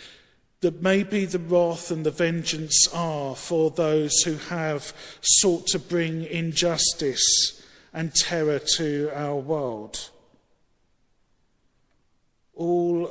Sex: male